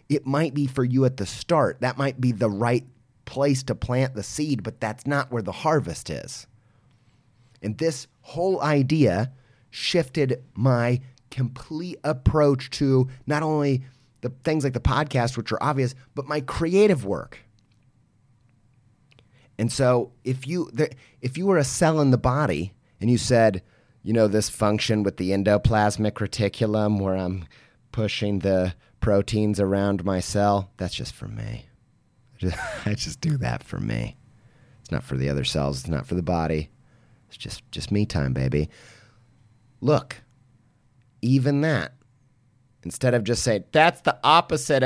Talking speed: 155 wpm